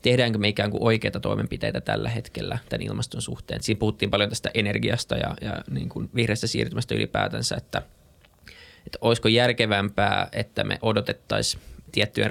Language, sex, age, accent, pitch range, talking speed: Finnish, male, 20-39, native, 100-115 Hz, 140 wpm